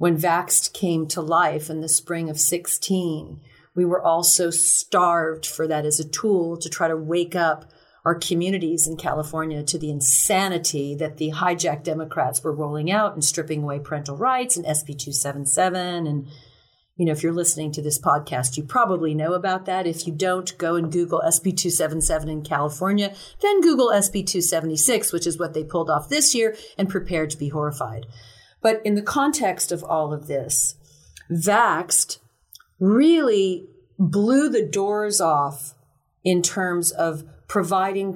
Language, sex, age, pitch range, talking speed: English, female, 50-69, 155-190 Hz, 165 wpm